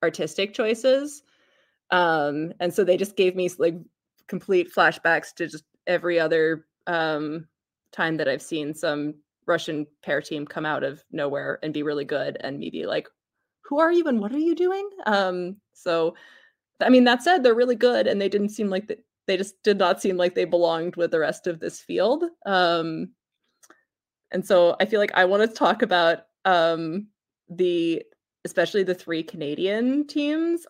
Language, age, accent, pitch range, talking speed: English, 20-39, American, 165-210 Hz, 180 wpm